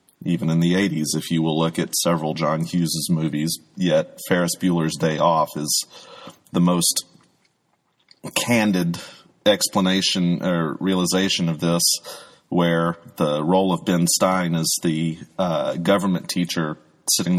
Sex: male